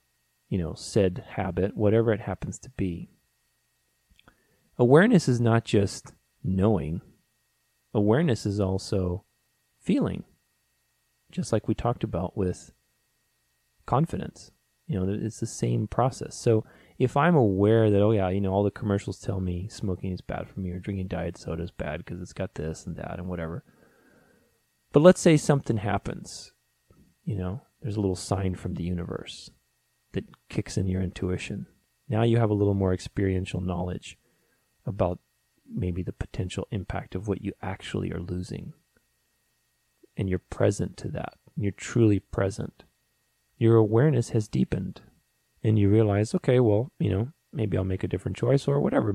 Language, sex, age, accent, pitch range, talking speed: English, male, 30-49, American, 90-115 Hz, 155 wpm